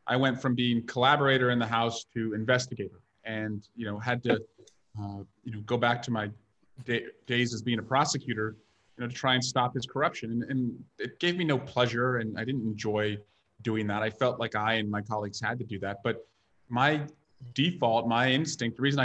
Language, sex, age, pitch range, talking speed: English, male, 30-49, 115-135 Hz, 210 wpm